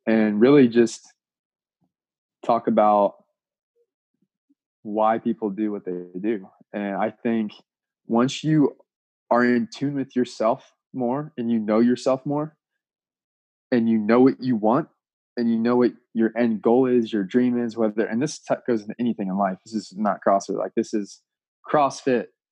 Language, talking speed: English, 160 wpm